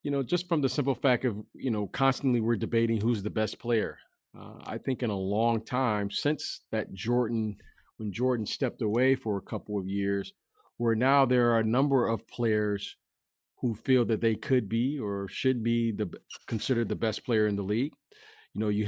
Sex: male